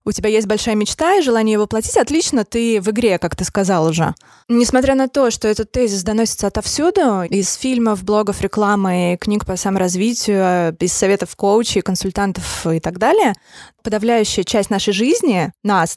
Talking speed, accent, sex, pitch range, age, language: 165 wpm, native, female, 190-230 Hz, 20-39, Russian